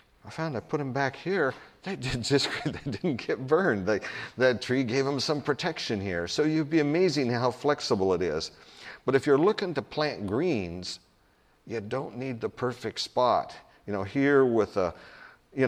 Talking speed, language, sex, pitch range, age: 185 wpm, English, male, 95-130 Hz, 50-69